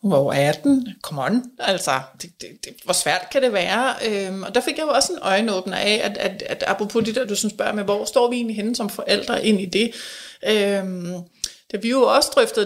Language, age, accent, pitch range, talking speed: Danish, 30-49, native, 210-250 Hz, 235 wpm